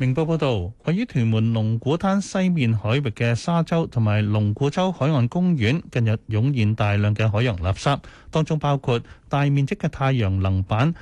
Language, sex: Chinese, male